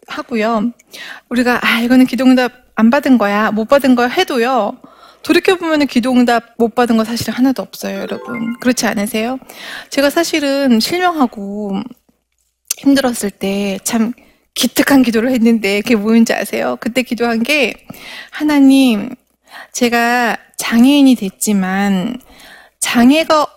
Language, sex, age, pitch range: Korean, female, 20-39, 225-275 Hz